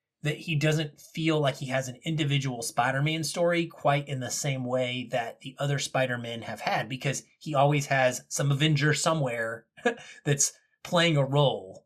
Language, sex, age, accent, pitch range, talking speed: English, male, 30-49, American, 130-155 Hz, 165 wpm